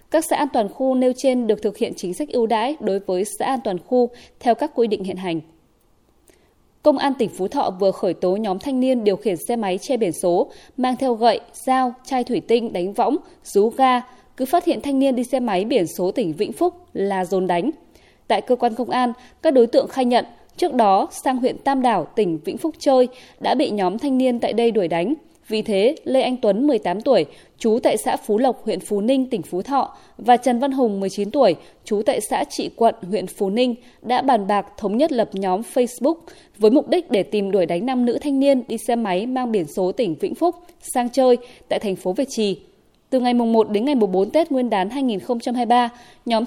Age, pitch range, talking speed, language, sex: 20-39, 205-265 Hz, 230 wpm, Vietnamese, female